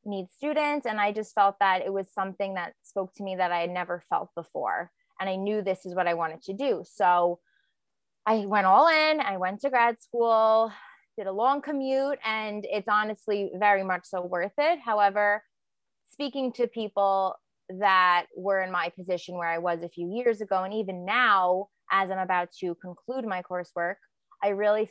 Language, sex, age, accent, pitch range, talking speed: English, female, 20-39, American, 180-210 Hz, 195 wpm